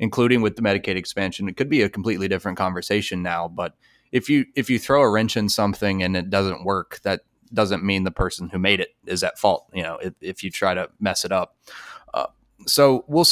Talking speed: 230 wpm